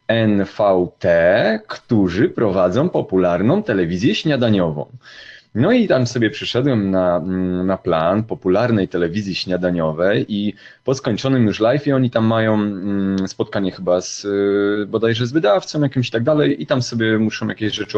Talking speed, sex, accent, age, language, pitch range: 135 wpm, male, native, 30-49, Polish, 100-125 Hz